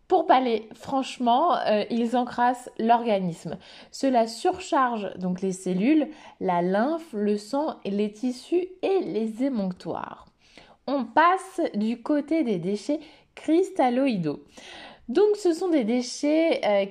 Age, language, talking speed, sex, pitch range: 20-39, French, 120 wpm, female, 210-300 Hz